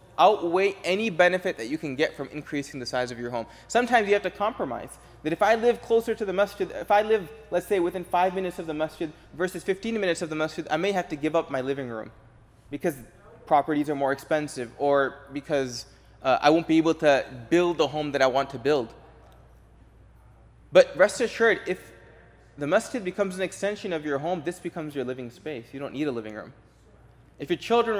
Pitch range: 140-190 Hz